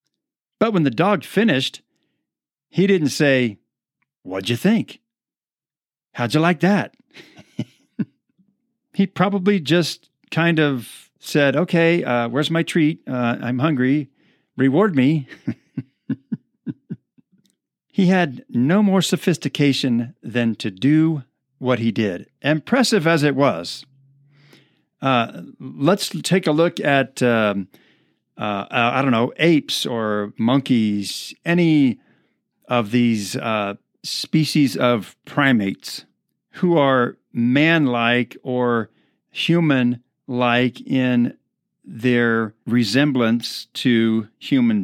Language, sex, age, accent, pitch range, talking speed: English, male, 50-69, American, 120-165 Hz, 105 wpm